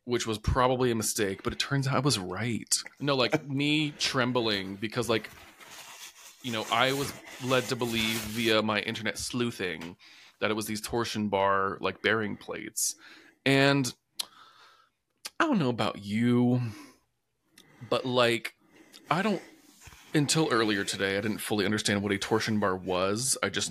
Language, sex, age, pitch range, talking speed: English, male, 20-39, 100-125 Hz, 155 wpm